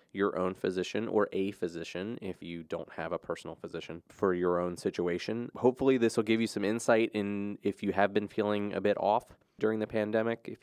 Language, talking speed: English, 210 wpm